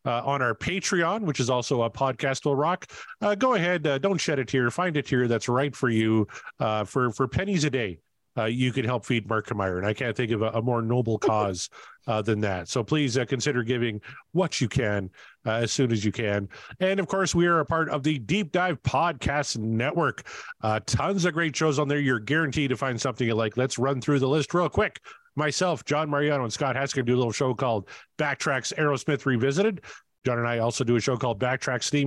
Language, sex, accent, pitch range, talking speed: English, male, American, 115-145 Hz, 230 wpm